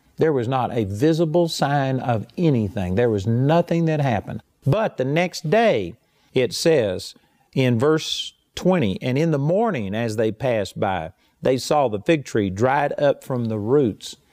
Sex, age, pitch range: male, 50-69, 115-155 Hz